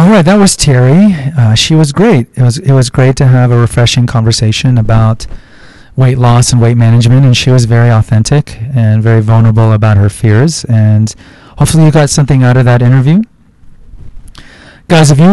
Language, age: English, 40-59